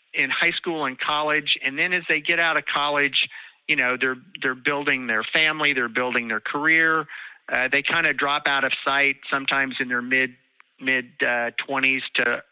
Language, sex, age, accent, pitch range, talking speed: English, male, 50-69, American, 115-140 Hz, 195 wpm